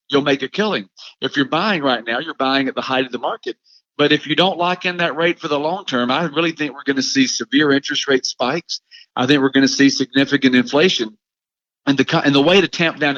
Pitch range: 135-170 Hz